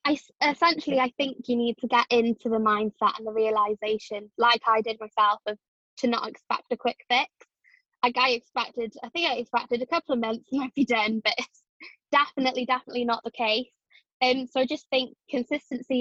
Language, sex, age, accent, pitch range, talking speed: English, female, 10-29, British, 220-255 Hz, 200 wpm